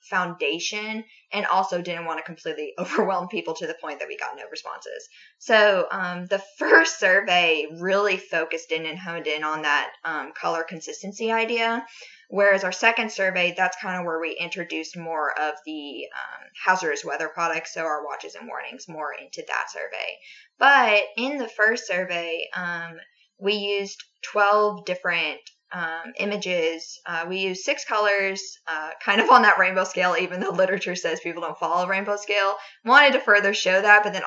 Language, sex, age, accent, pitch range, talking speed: English, female, 10-29, American, 165-210 Hz, 175 wpm